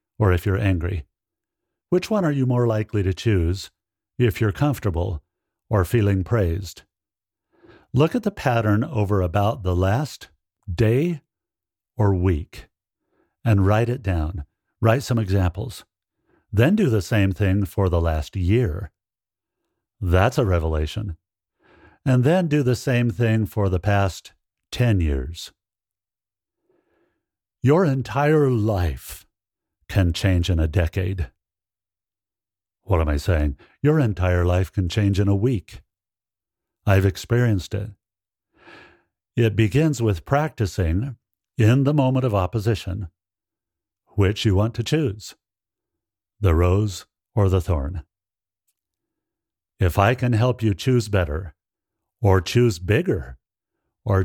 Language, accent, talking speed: English, American, 125 wpm